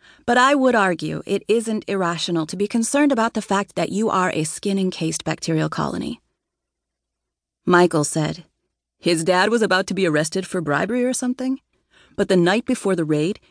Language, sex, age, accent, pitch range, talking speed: English, female, 30-49, American, 165-210 Hz, 180 wpm